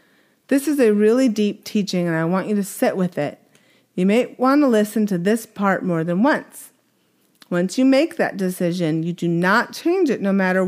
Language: English